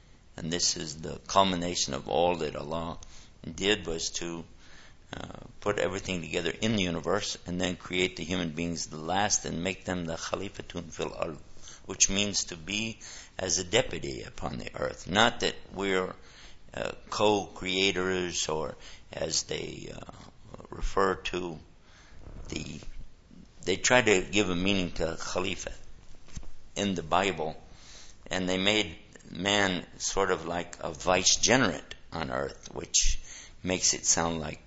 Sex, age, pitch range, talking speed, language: male, 60-79, 80-95 Hz, 145 wpm, English